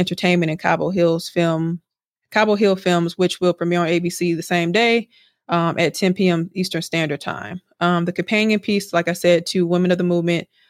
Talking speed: 195 wpm